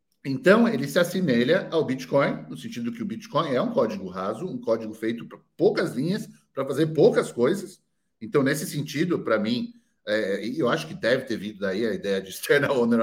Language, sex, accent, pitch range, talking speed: Portuguese, male, Brazilian, 145-235 Hz, 200 wpm